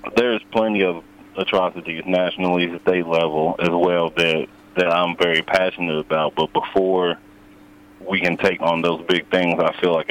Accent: American